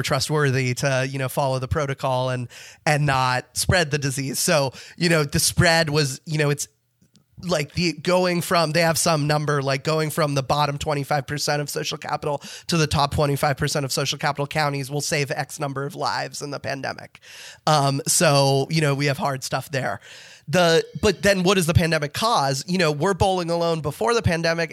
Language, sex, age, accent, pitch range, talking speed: English, male, 20-39, American, 140-165 Hz, 195 wpm